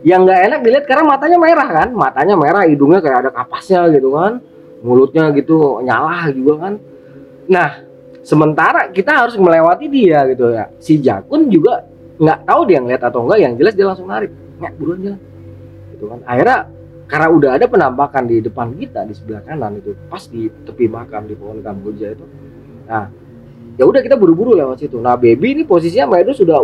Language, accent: Indonesian, native